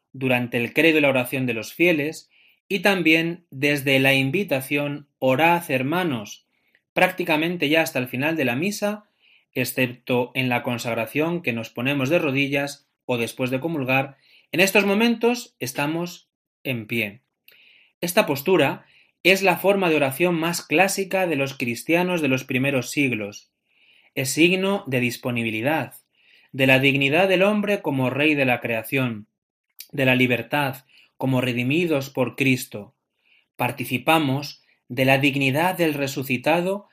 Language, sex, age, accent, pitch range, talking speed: Spanish, male, 30-49, Spanish, 130-170 Hz, 140 wpm